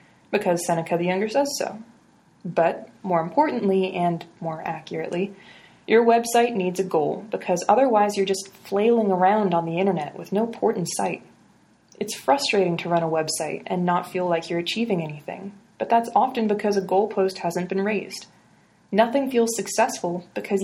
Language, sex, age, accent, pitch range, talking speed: English, female, 20-39, American, 170-205 Hz, 165 wpm